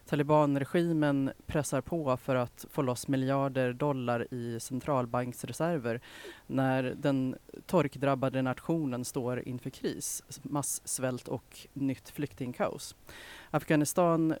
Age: 30-49